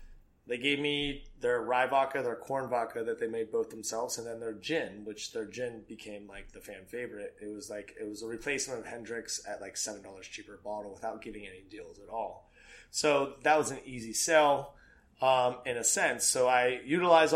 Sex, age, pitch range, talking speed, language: male, 30-49, 110-135 Hz, 205 wpm, English